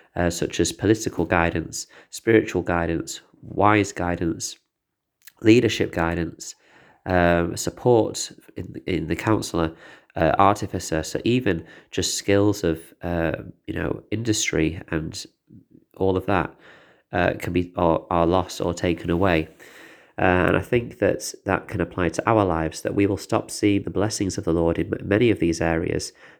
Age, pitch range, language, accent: 30-49, 85-100 Hz, English, British